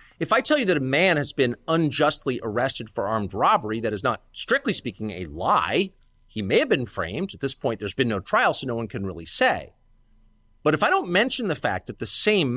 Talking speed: 235 wpm